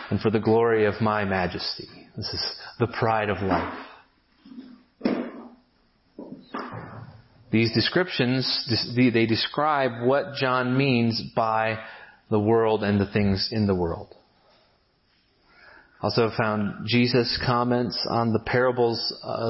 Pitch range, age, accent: 115-135 Hz, 30-49, American